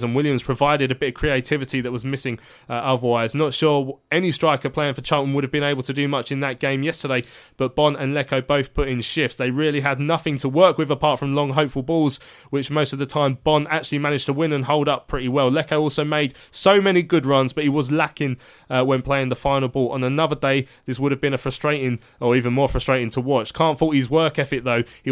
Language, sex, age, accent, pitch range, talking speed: English, male, 20-39, British, 130-160 Hz, 250 wpm